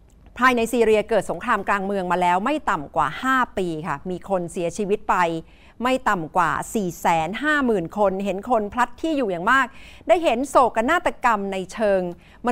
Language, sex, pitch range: Thai, female, 190-265 Hz